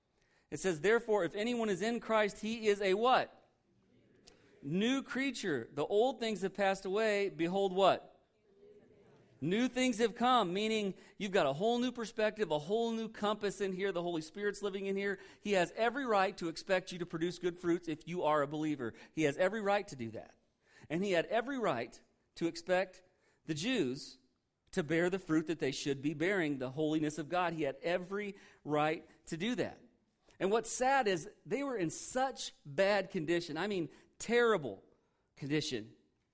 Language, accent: English, American